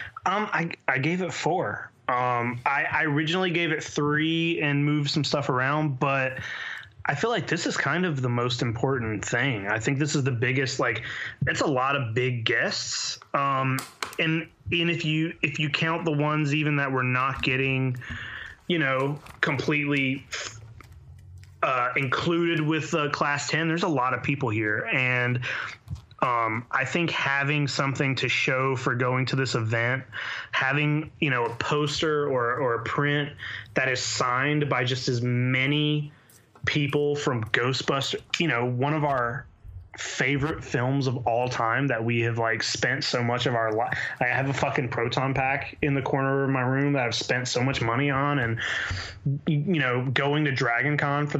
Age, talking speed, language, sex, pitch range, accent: 20-39, 180 wpm, English, male, 125-150 Hz, American